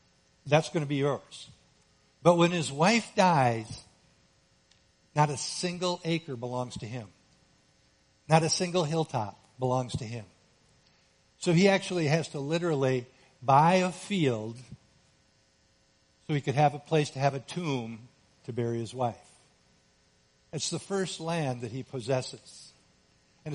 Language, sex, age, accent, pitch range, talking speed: English, male, 60-79, American, 125-170 Hz, 140 wpm